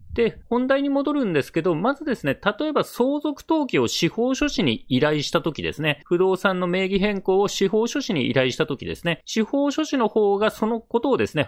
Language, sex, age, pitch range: Japanese, male, 30-49, 145-220 Hz